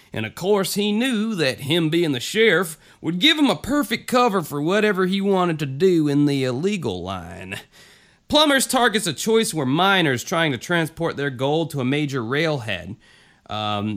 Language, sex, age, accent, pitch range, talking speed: English, male, 30-49, American, 120-170 Hz, 180 wpm